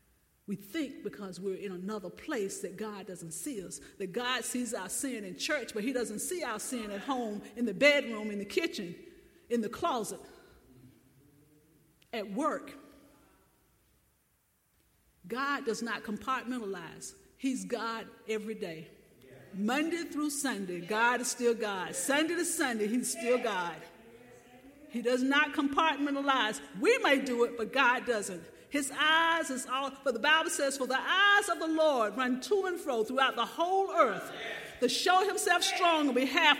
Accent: American